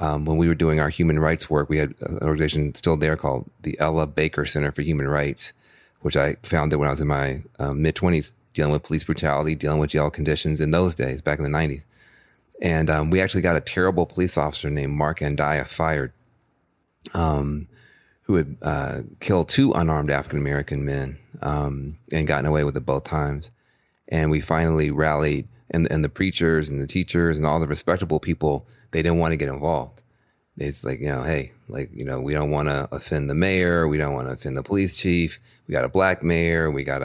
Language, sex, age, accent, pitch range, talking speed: English, male, 30-49, American, 75-85 Hz, 215 wpm